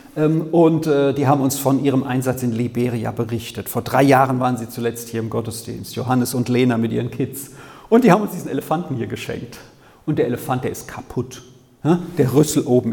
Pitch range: 125-160 Hz